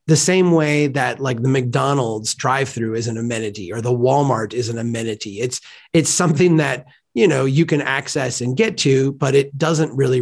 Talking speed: 195 wpm